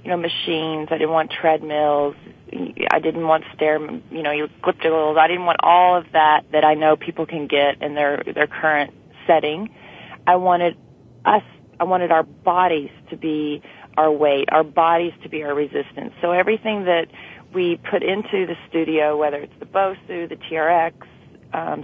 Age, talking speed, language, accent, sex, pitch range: 30-49, 175 wpm, English, American, female, 145-165 Hz